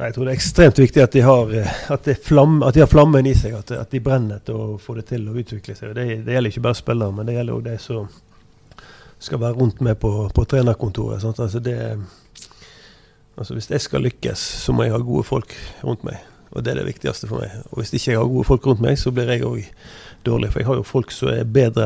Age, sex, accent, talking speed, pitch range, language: 30-49, male, Swedish, 265 wpm, 110-130 Hz, English